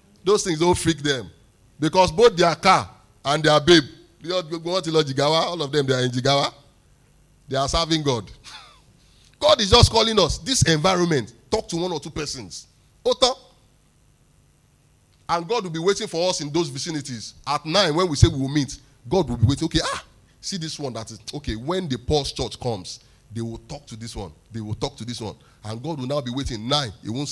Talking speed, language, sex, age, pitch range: 200 wpm, English, male, 30-49, 120-175 Hz